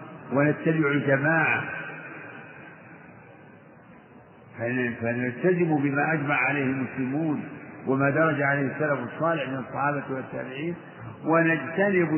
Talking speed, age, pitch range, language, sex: 80 wpm, 50-69, 135-160 Hz, Arabic, male